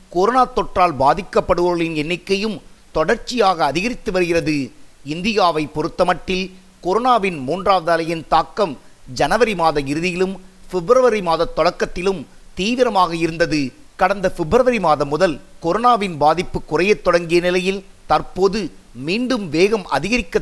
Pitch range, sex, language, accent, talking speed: 160-195 Hz, male, Tamil, native, 105 wpm